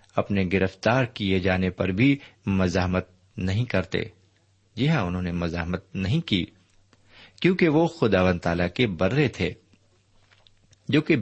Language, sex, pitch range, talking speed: Urdu, male, 95-125 Hz, 135 wpm